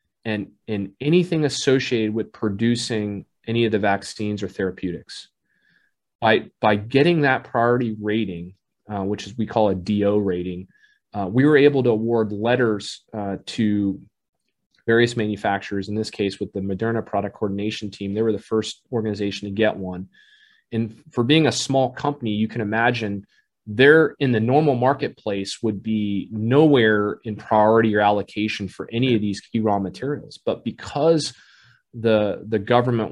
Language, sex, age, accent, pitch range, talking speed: English, male, 30-49, American, 105-120 Hz, 160 wpm